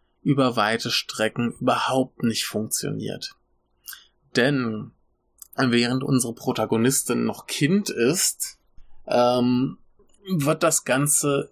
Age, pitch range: 20-39, 110-130 Hz